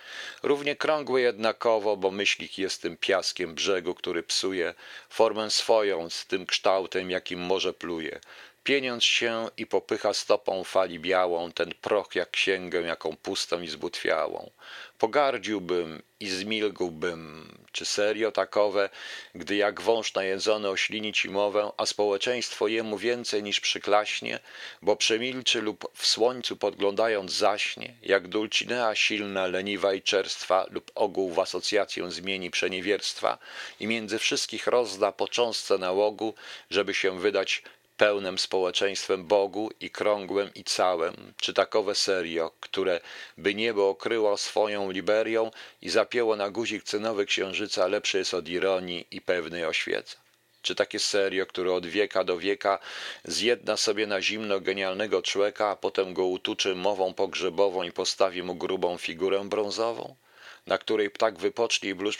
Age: 40-59